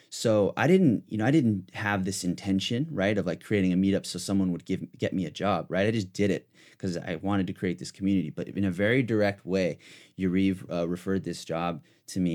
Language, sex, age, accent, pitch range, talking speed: English, male, 30-49, American, 85-100 Hz, 240 wpm